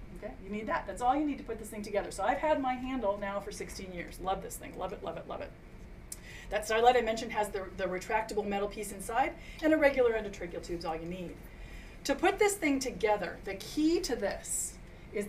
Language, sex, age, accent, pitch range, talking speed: English, female, 30-49, American, 200-260 Hz, 235 wpm